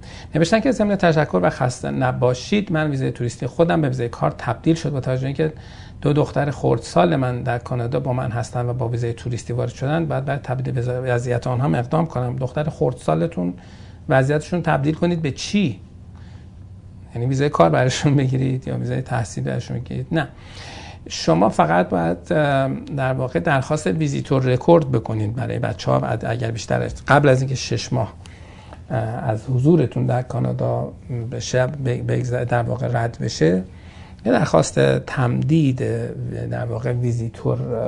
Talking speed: 150 wpm